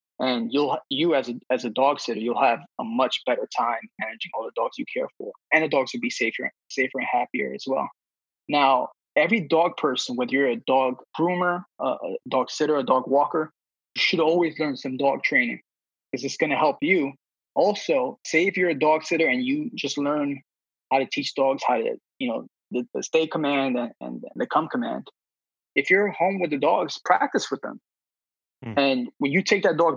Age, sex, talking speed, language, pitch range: 20-39, male, 205 wpm, English, 125-170 Hz